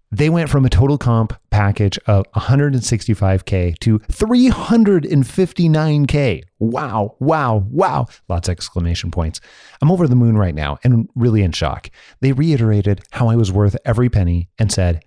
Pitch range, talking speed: 95-125 Hz, 150 wpm